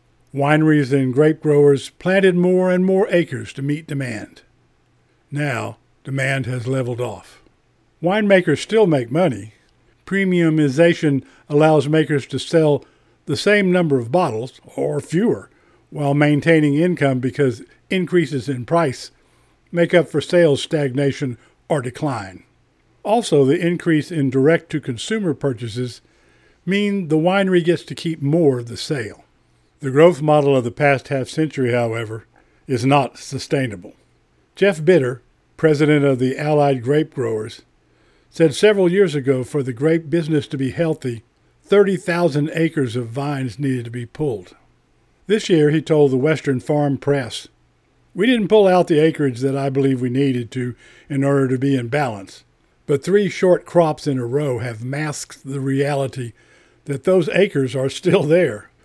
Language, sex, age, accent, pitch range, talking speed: English, male, 50-69, American, 130-165 Hz, 145 wpm